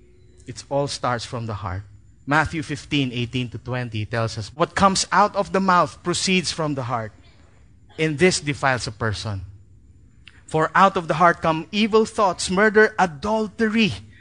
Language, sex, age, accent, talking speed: English, male, 30-49, Filipino, 150 wpm